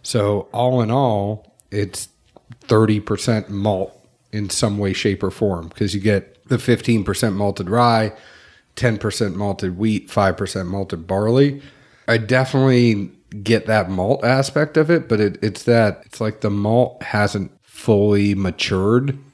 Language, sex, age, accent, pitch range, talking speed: English, male, 40-59, American, 100-125 Hz, 135 wpm